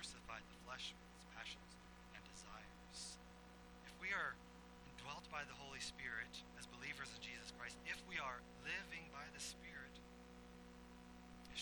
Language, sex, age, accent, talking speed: English, male, 30-49, American, 145 wpm